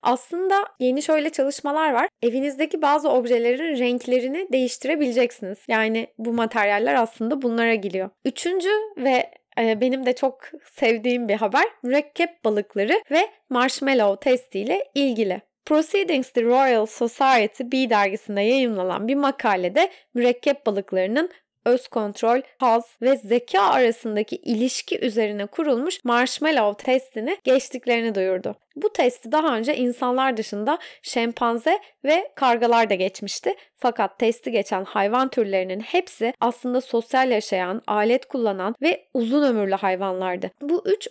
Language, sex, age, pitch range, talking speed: Turkish, female, 20-39, 220-275 Hz, 120 wpm